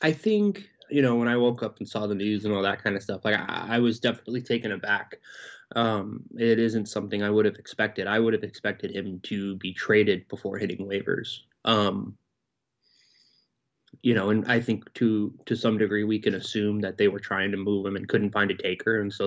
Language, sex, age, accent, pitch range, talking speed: English, male, 20-39, American, 105-130 Hz, 220 wpm